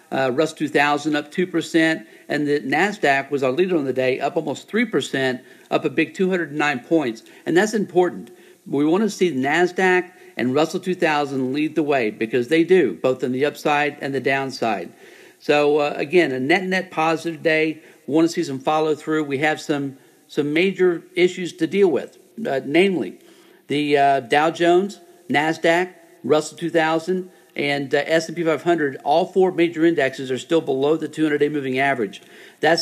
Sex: male